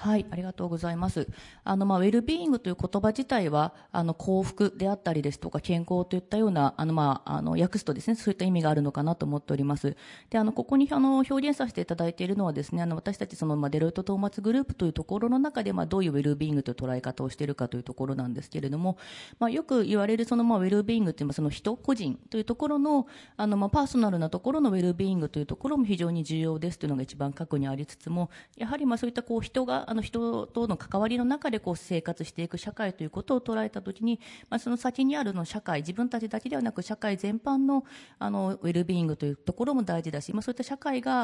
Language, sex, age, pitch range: Japanese, female, 30-49, 160-235 Hz